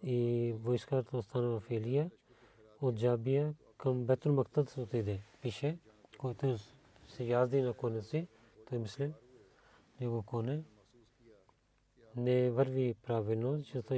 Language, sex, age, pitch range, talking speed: Bulgarian, male, 40-59, 115-130 Hz, 100 wpm